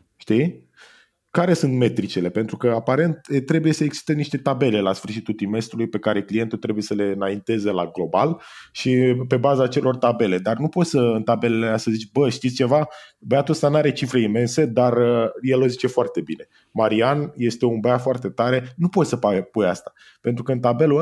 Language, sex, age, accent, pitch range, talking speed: Romanian, male, 20-39, native, 110-140 Hz, 195 wpm